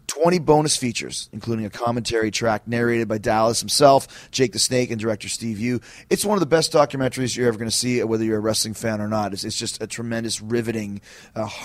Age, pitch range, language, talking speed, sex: 30-49, 105-125 Hz, English, 215 wpm, male